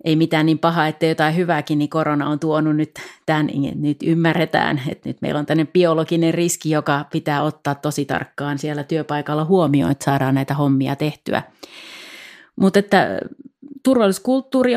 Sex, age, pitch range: female, 30-49, 150-175 Hz